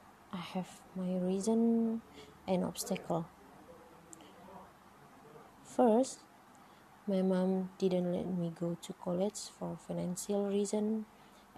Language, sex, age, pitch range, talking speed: English, female, 20-39, 180-210 Hz, 95 wpm